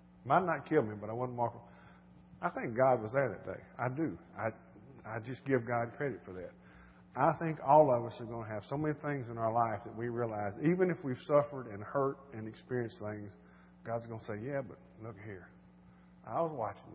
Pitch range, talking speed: 100-130 Hz, 225 wpm